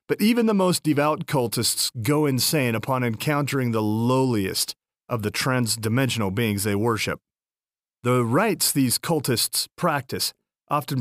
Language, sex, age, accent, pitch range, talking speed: English, male, 40-59, American, 110-150 Hz, 130 wpm